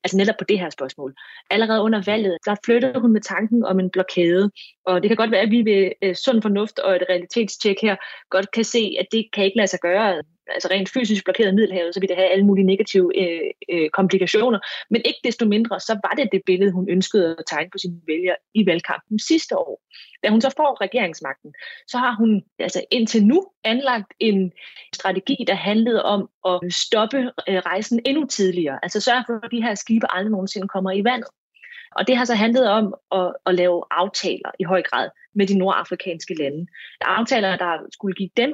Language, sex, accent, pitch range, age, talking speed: Danish, female, native, 185-235 Hz, 30-49, 205 wpm